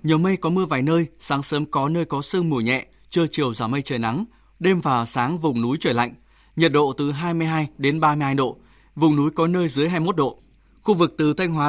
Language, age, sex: Vietnamese, 20-39, male